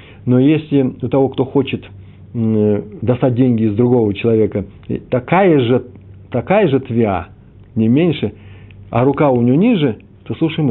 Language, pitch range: Russian, 100-130 Hz